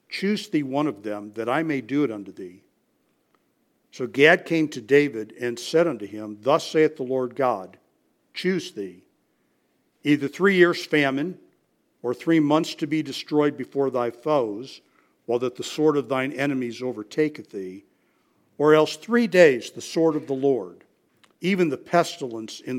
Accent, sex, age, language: American, male, 60-79, English